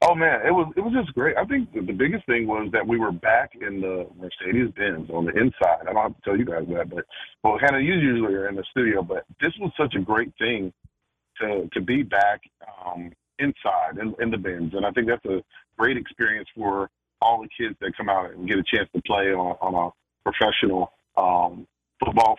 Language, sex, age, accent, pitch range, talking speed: English, male, 40-59, American, 95-120 Hz, 225 wpm